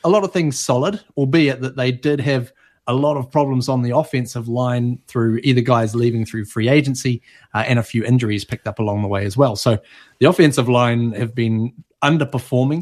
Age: 30-49